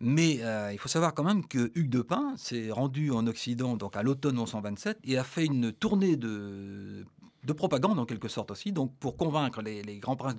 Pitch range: 115-155 Hz